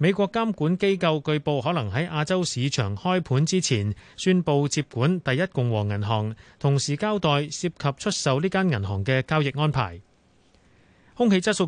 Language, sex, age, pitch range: Chinese, male, 30-49, 125-175 Hz